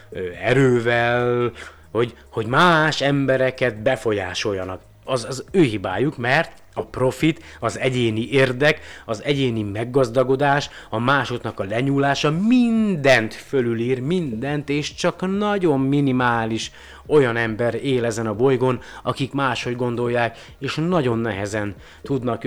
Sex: male